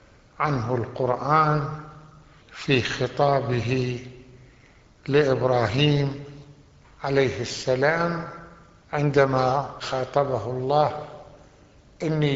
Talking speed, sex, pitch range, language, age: 55 wpm, male, 130-155 Hz, Arabic, 60-79